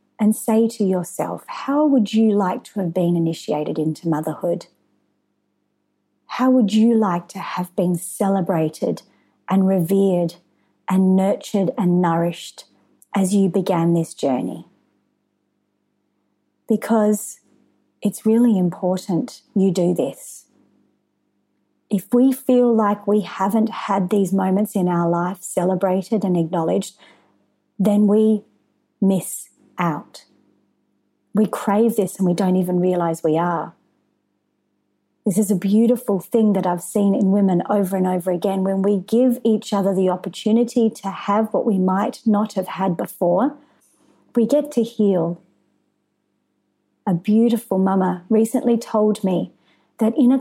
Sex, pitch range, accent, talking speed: female, 180-220 Hz, Australian, 135 wpm